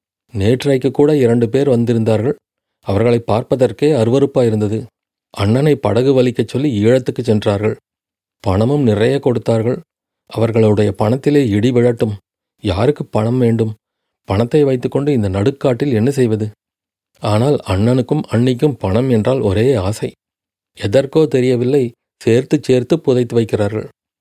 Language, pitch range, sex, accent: Tamil, 105-130 Hz, male, native